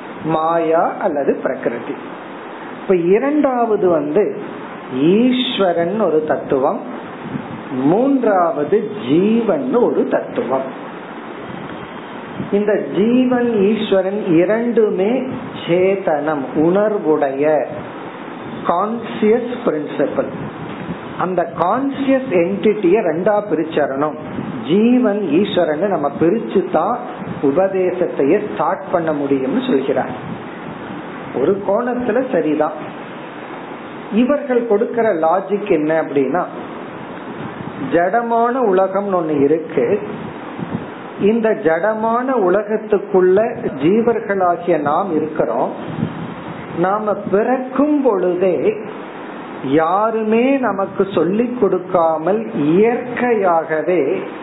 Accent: native